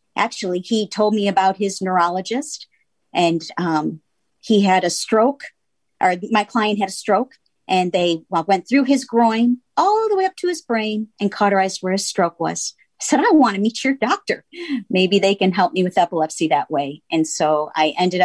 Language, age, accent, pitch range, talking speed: English, 50-69, American, 175-235 Hz, 195 wpm